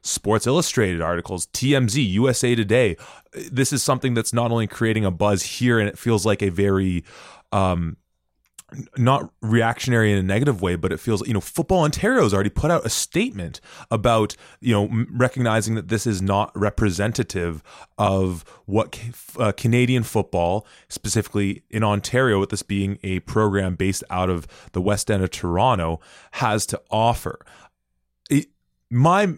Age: 20-39